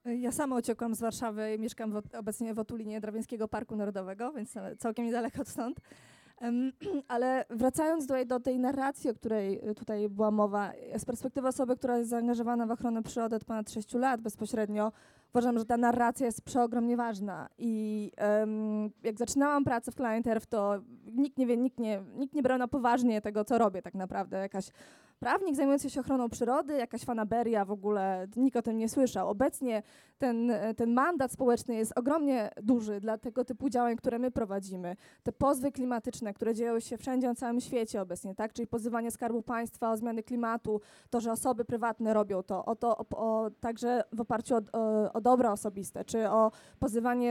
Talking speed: 185 wpm